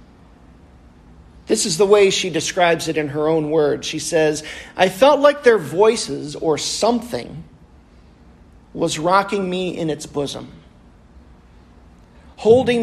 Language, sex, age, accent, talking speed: English, male, 40-59, American, 125 wpm